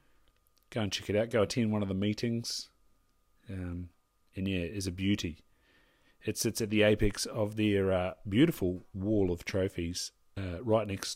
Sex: male